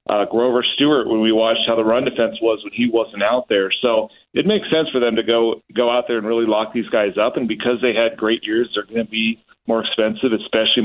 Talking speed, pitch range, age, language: 255 wpm, 110-125 Hz, 40-59, English